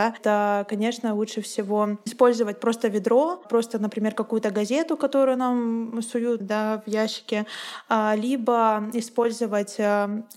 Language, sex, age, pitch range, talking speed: Russian, female, 20-39, 210-235 Hz, 115 wpm